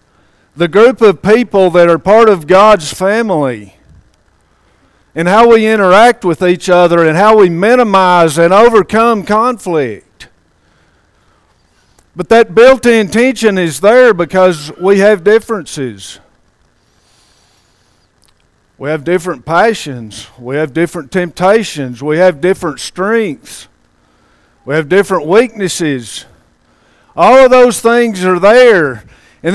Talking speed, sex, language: 115 wpm, male, English